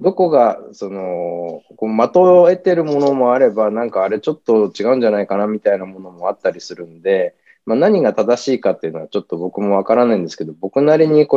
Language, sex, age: Japanese, male, 20-39